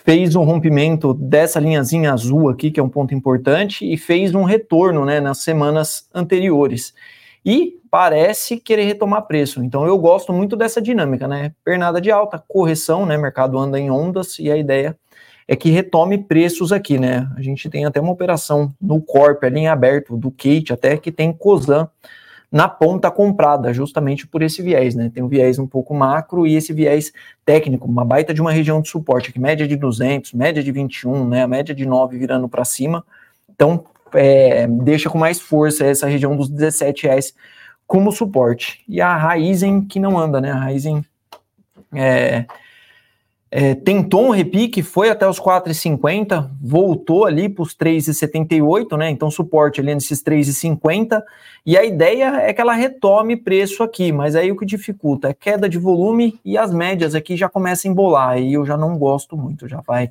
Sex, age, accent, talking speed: male, 20-39, Brazilian, 185 wpm